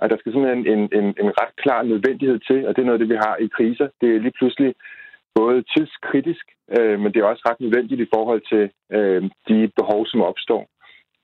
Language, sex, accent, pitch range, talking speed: Danish, male, native, 105-125 Hz, 225 wpm